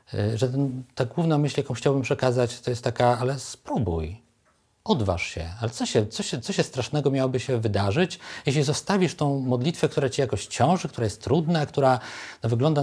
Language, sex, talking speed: Polish, male, 170 wpm